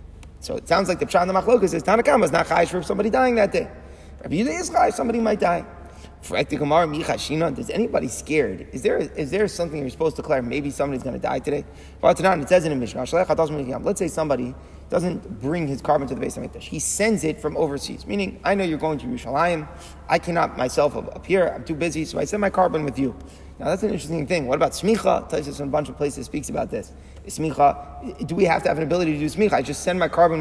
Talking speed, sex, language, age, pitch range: 235 wpm, male, English, 30-49, 145-200 Hz